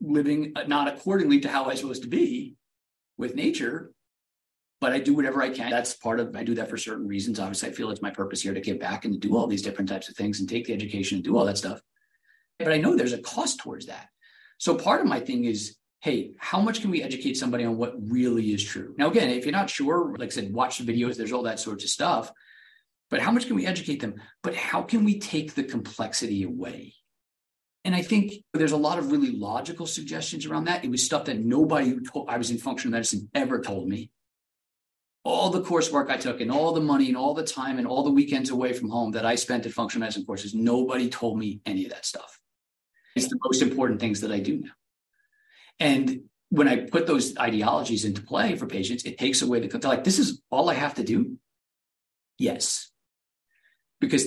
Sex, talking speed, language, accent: male, 225 wpm, English, American